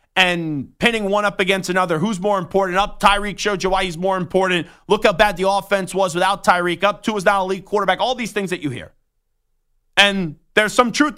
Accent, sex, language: American, male, English